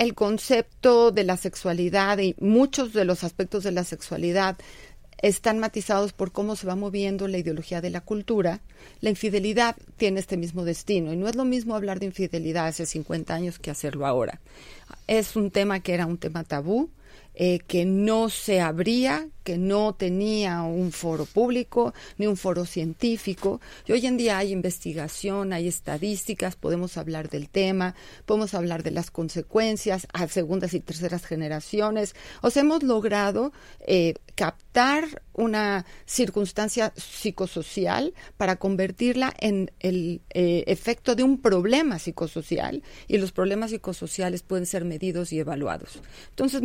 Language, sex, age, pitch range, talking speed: Spanish, female, 40-59, 175-220 Hz, 155 wpm